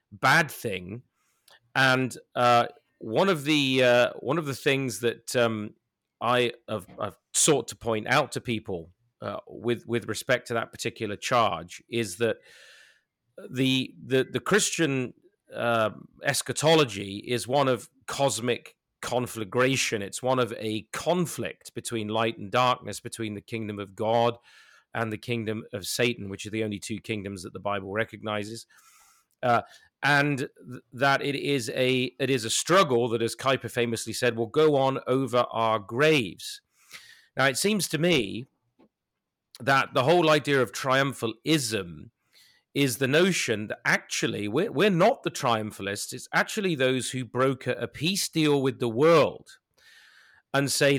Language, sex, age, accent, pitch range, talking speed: English, male, 40-59, British, 115-140 Hz, 150 wpm